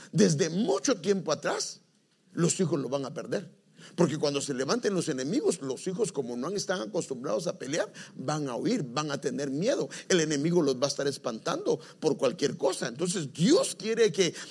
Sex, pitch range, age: male, 165-195 Hz, 50-69